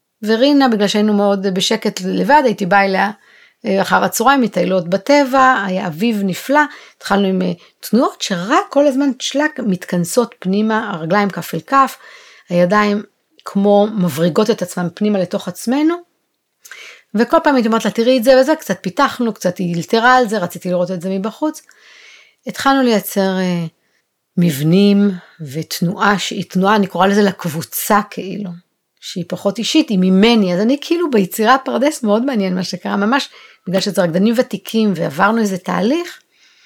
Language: Hebrew